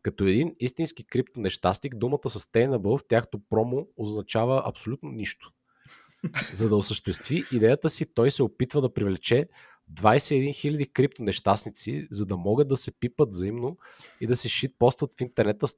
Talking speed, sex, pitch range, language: 150 wpm, male, 105-135 Hz, Bulgarian